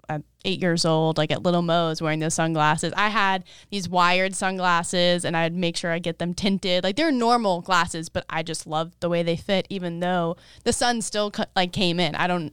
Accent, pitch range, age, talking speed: American, 165-205 Hz, 20-39, 225 wpm